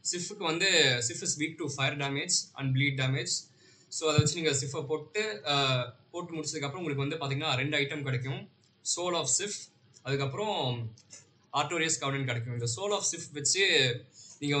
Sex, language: male, Tamil